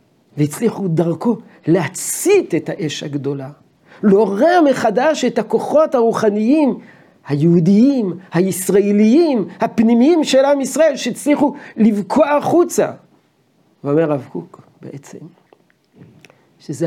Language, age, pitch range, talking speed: Hebrew, 50-69, 160-235 Hz, 90 wpm